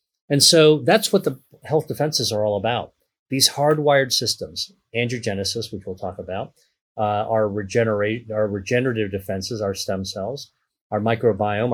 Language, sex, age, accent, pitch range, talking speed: English, male, 30-49, American, 105-140 Hz, 150 wpm